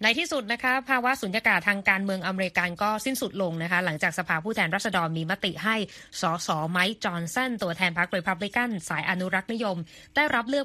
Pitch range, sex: 175-225 Hz, female